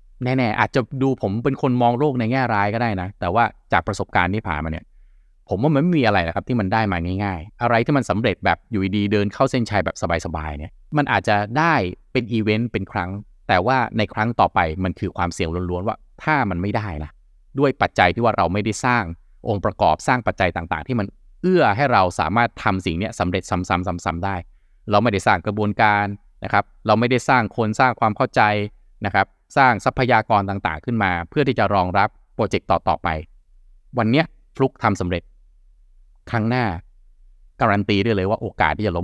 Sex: male